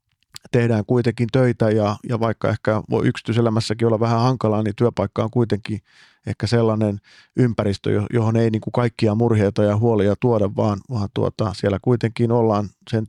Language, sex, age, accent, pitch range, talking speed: Finnish, male, 40-59, native, 105-120 Hz, 145 wpm